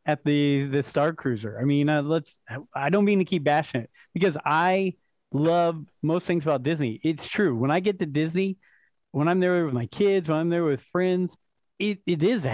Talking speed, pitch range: 215 wpm, 135-175 Hz